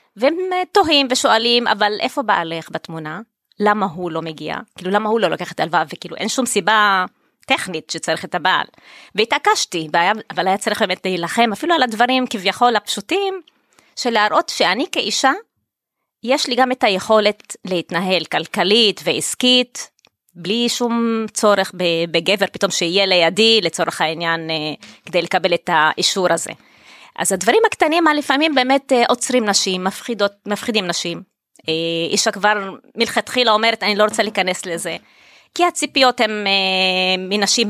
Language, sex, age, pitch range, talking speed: Hebrew, female, 20-39, 185-245 Hz, 140 wpm